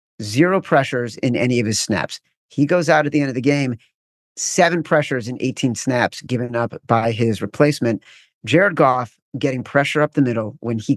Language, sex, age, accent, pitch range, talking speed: English, male, 50-69, American, 120-145 Hz, 190 wpm